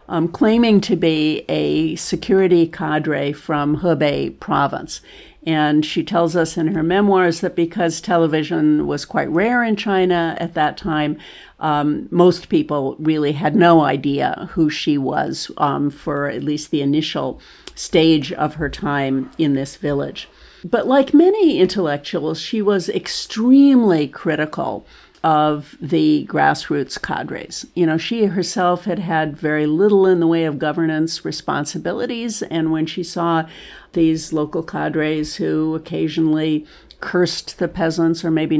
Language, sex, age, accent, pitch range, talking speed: English, female, 50-69, American, 150-175 Hz, 140 wpm